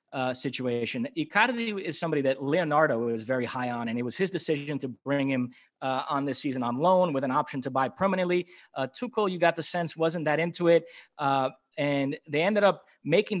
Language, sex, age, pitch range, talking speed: English, male, 30-49, 145-190 Hz, 210 wpm